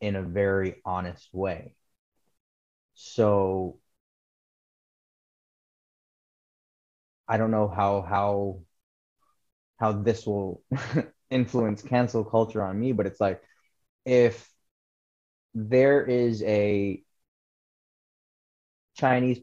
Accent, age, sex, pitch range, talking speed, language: American, 20-39, male, 95-115 Hz, 85 wpm, English